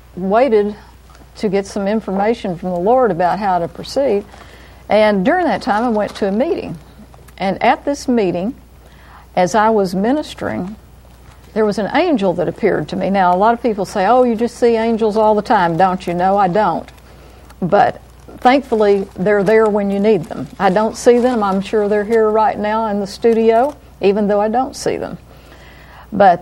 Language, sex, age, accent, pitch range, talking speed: English, female, 50-69, American, 185-235 Hz, 190 wpm